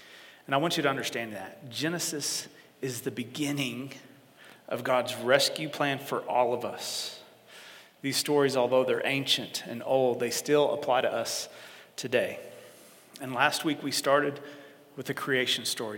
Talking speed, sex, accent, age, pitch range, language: 155 wpm, male, American, 40-59, 125-145 Hz, English